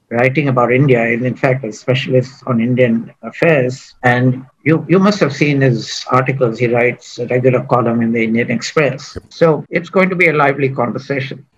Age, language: 60-79, English